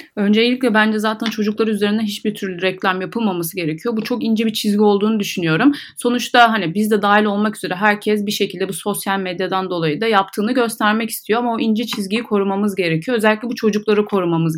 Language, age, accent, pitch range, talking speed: Turkish, 30-49, native, 195-230 Hz, 185 wpm